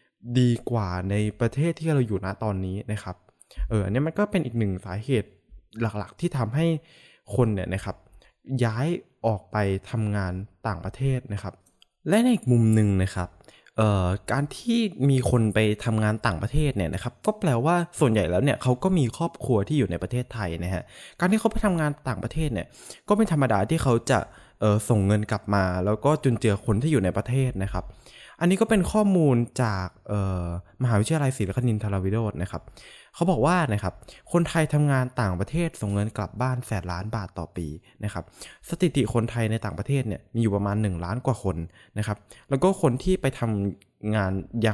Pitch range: 100-135 Hz